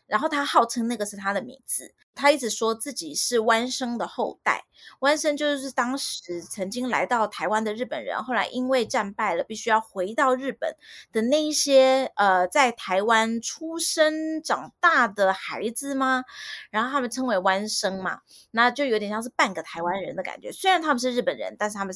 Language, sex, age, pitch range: Chinese, female, 20-39, 215-280 Hz